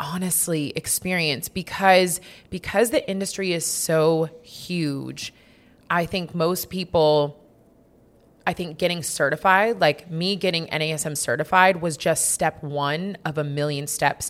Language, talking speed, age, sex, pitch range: English, 125 wpm, 30-49, female, 140-180 Hz